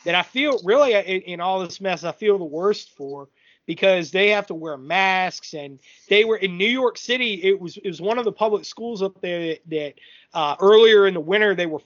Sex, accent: male, American